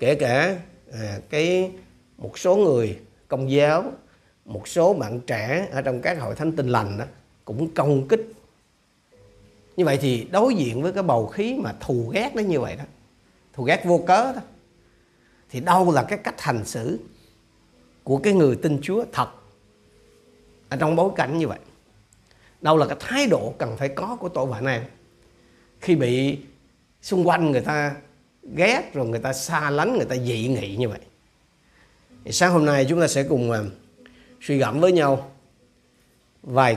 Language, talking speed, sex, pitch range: Vietnamese, 175 wpm, male, 125-170 Hz